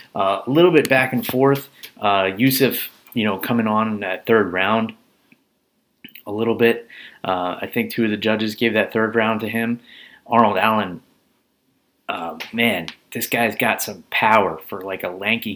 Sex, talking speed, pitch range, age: male, 175 wpm, 95-115 Hz, 30-49